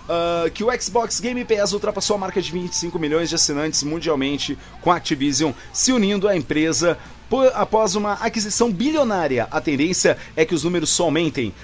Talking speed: 170 wpm